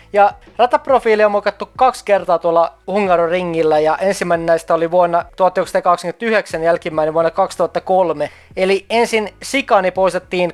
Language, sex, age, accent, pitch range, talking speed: Finnish, male, 20-39, native, 165-195 Hz, 120 wpm